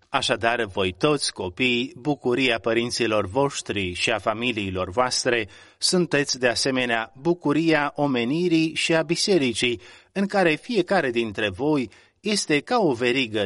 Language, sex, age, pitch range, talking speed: Romanian, male, 30-49, 105-140 Hz, 125 wpm